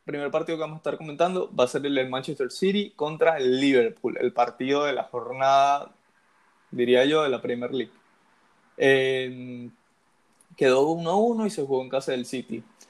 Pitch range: 130-165 Hz